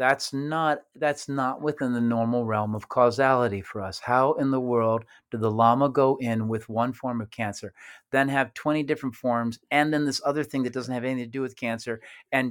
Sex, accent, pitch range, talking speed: male, American, 115-140 Hz, 215 wpm